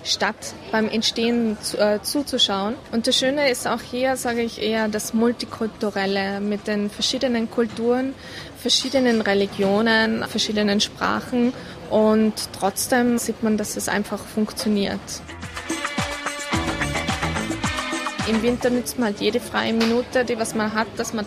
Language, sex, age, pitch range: German, female, 20-39, 210-240 Hz